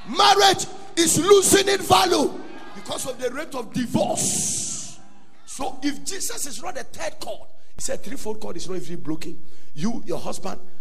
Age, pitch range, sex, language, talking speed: 50-69, 180-295 Hz, male, English, 165 wpm